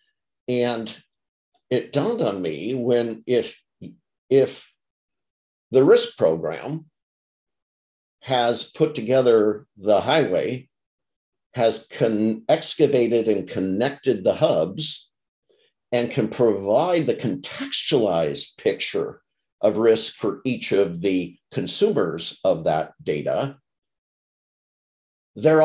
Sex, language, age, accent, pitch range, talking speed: male, English, 50-69, American, 100-145 Hz, 95 wpm